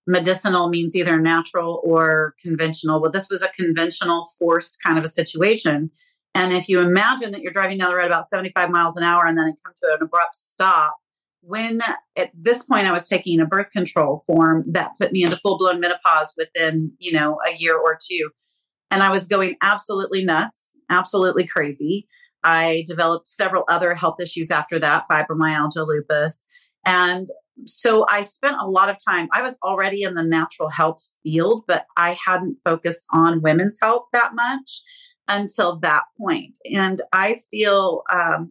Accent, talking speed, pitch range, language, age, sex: American, 180 wpm, 165-195 Hz, English, 40-59, female